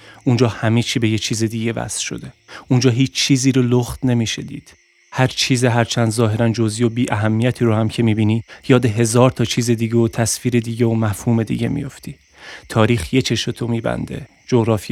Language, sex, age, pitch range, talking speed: Persian, male, 30-49, 115-125 Hz, 185 wpm